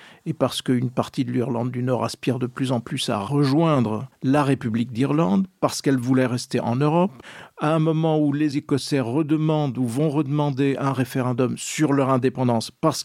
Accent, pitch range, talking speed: French, 125-155 Hz, 185 wpm